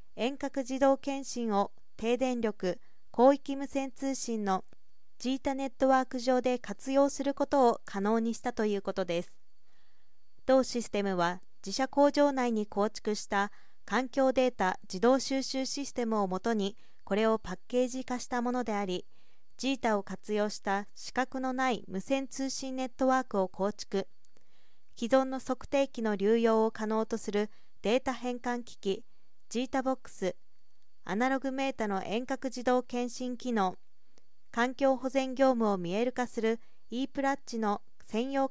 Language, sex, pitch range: Japanese, female, 210-265 Hz